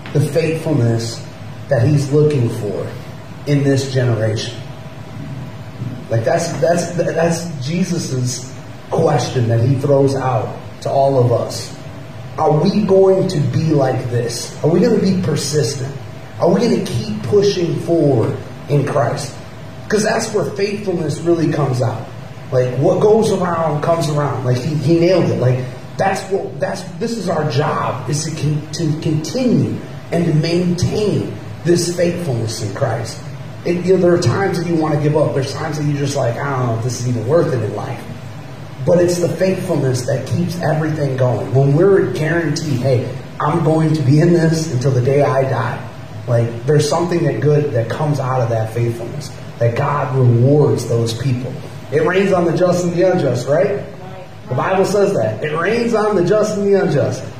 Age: 30-49